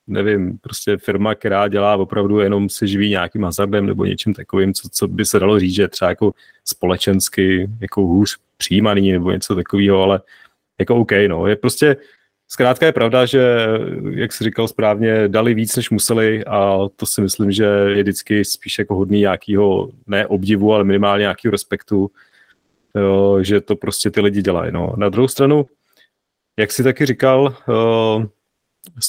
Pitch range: 100-115 Hz